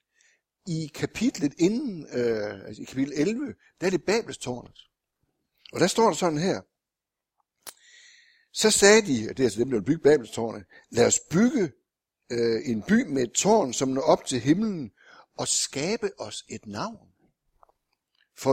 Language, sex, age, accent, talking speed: Danish, male, 60-79, native, 155 wpm